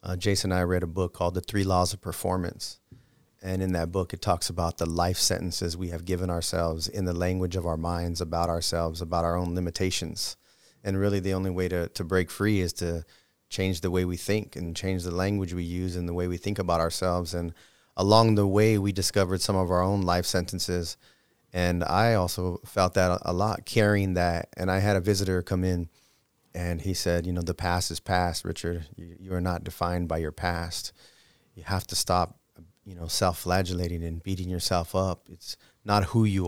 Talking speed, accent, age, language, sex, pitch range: 210 wpm, American, 30-49, English, male, 85-95 Hz